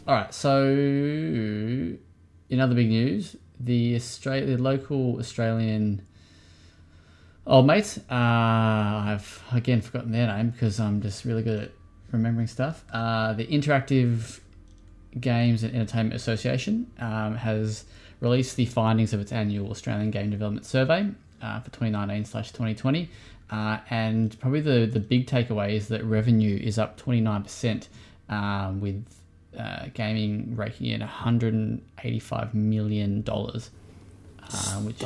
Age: 20-39